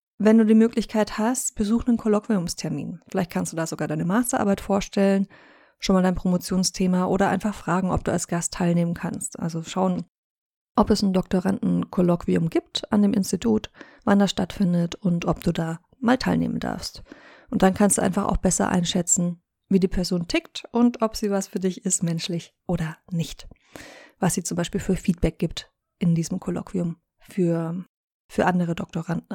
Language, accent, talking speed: German, German, 175 wpm